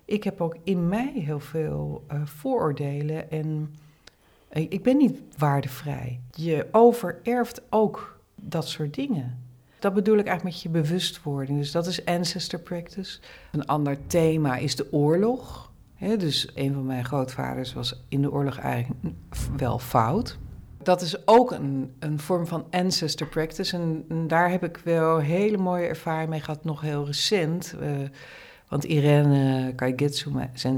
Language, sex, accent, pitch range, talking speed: Dutch, female, Dutch, 140-175 Hz, 150 wpm